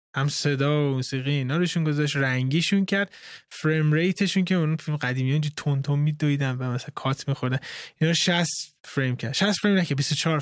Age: 20-39